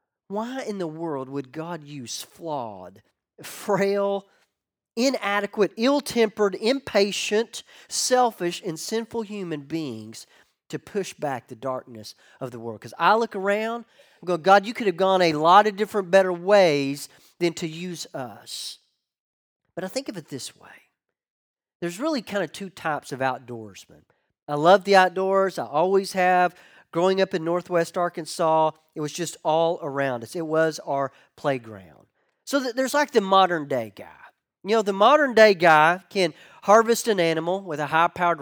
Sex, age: male, 40-59